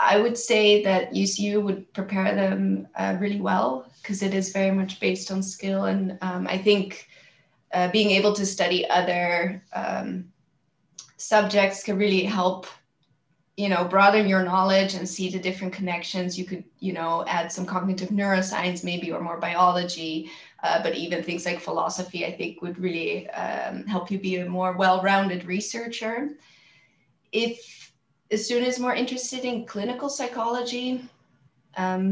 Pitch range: 180-205 Hz